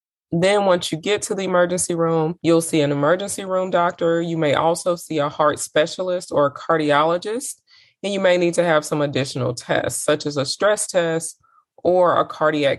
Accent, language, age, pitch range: American, English, 20-39, 140-175 Hz